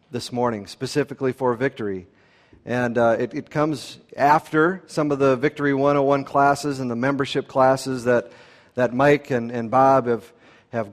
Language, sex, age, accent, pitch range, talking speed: English, male, 40-59, American, 125-155 Hz, 160 wpm